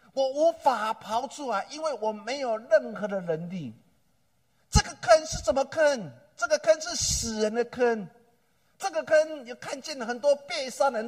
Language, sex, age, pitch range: Chinese, male, 50-69, 215-285 Hz